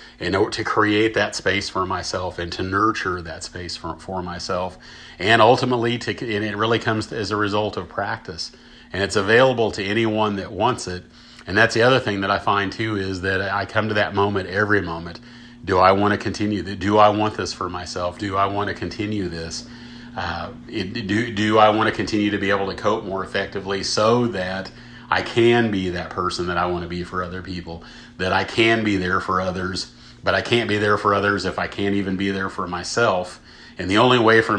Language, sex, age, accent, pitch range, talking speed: English, male, 40-59, American, 90-110 Hz, 225 wpm